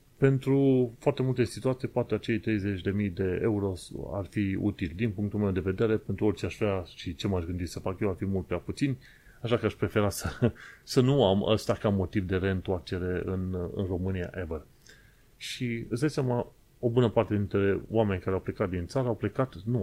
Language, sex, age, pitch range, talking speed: Romanian, male, 30-49, 95-115 Hz, 195 wpm